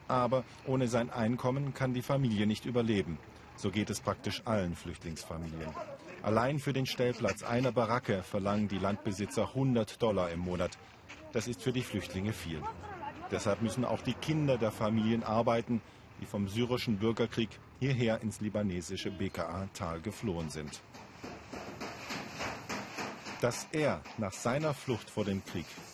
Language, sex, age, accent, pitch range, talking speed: German, male, 50-69, German, 100-130 Hz, 140 wpm